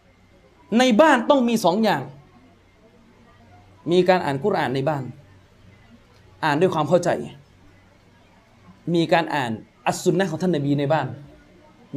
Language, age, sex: Thai, 20-39, male